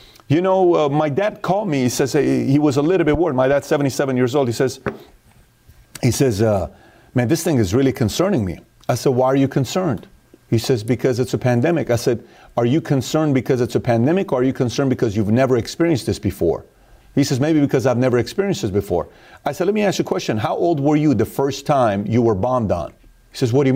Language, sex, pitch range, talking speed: English, male, 115-155 Hz, 245 wpm